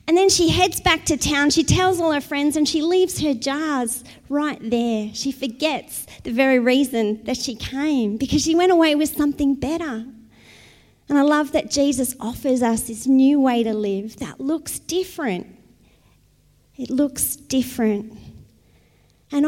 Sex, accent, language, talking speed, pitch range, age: female, Australian, English, 165 wpm, 235-295 Hz, 30-49